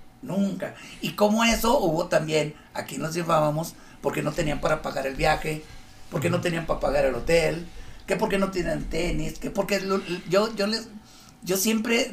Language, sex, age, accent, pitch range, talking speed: Spanish, male, 50-69, Mexican, 140-195 Hz, 180 wpm